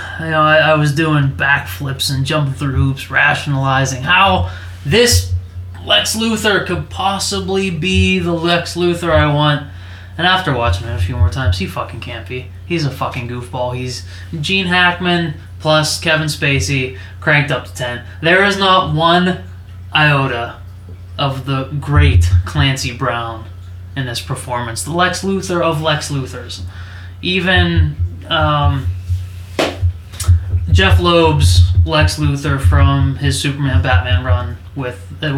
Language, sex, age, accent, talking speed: English, male, 20-39, American, 135 wpm